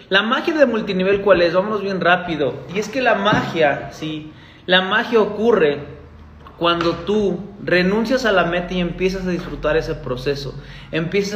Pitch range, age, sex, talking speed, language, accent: 145-195 Hz, 30-49, male, 165 wpm, Spanish, Mexican